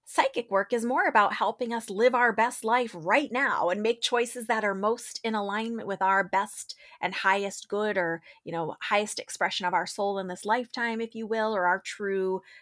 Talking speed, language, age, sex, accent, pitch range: 210 wpm, English, 30-49, female, American, 185-245 Hz